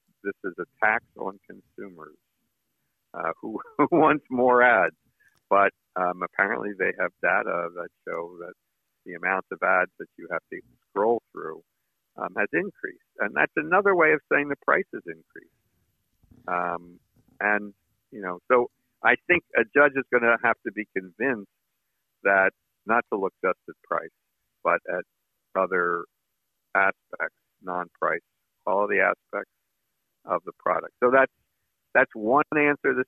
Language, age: English, 50-69